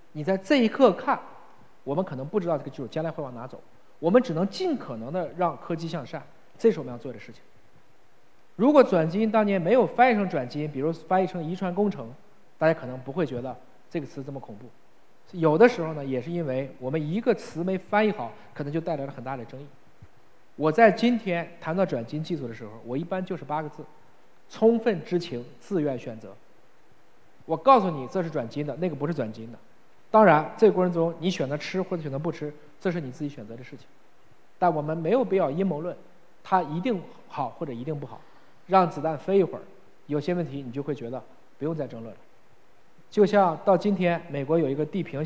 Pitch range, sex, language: 145-190 Hz, male, Chinese